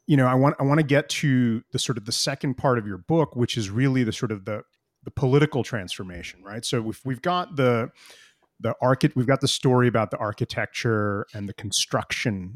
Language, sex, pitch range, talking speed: English, male, 105-135 Hz, 220 wpm